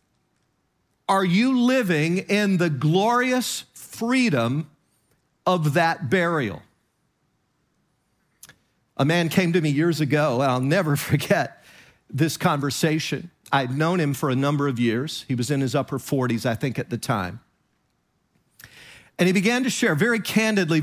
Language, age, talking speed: English, 50-69, 140 wpm